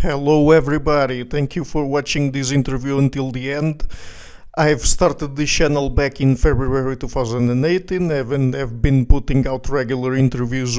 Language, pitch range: English, 130-150 Hz